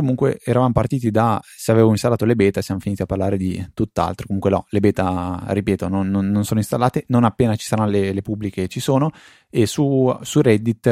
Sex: male